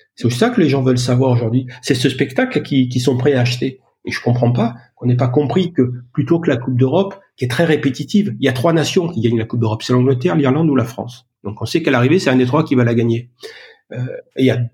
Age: 50-69